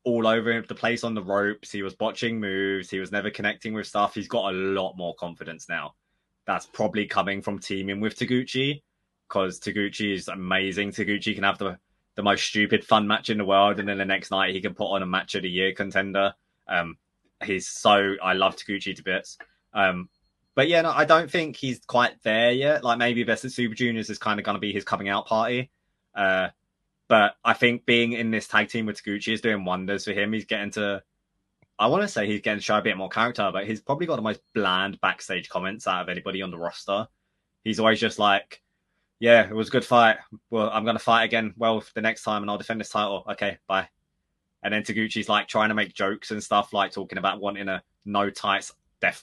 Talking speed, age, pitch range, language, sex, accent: 230 wpm, 20-39, 100-115 Hz, English, male, British